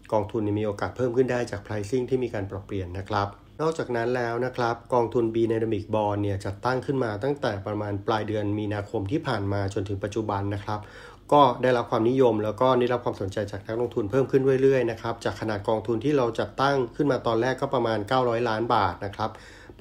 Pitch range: 105-125 Hz